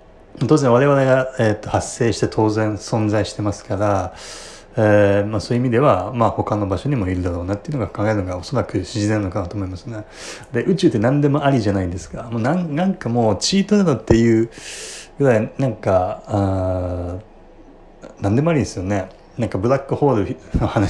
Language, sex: Japanese, male